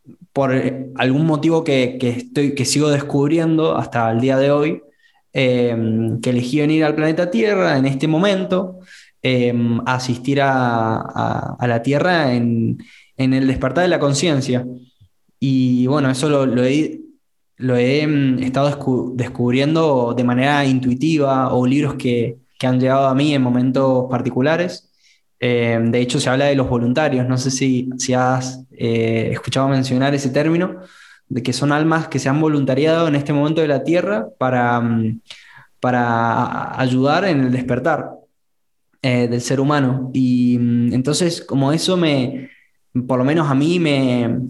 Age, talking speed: 20-39, 155 wpm